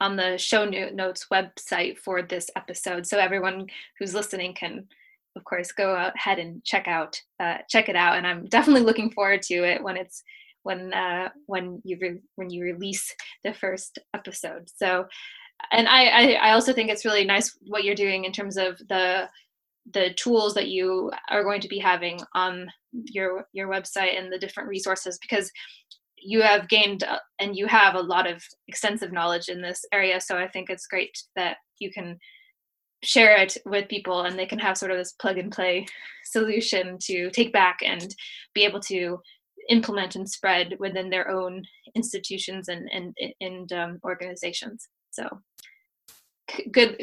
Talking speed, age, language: 175 wpm, 20-39, English